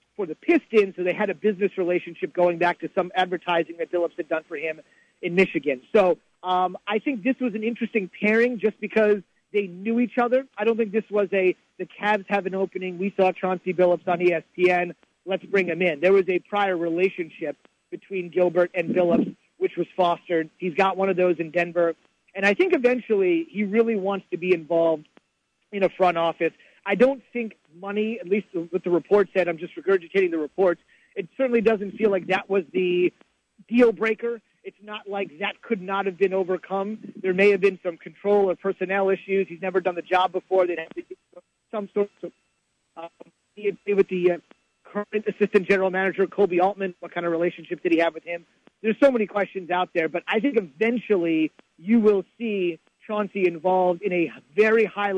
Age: 40-59